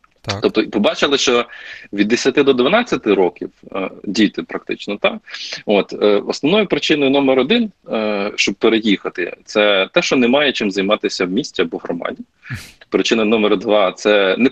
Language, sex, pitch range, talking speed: English, male, 105-155 Hz, 140 wpm